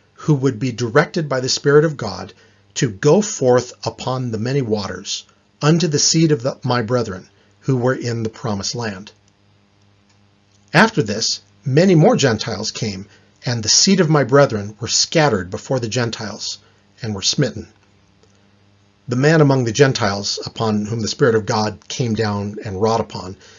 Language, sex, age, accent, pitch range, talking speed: English, male, 40-59, American, 100-130 Hz, 165 wpm